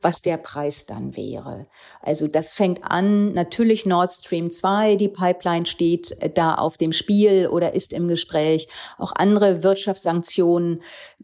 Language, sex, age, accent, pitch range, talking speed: German, female, 40-59, German, 170-215 Hz, 145 wpm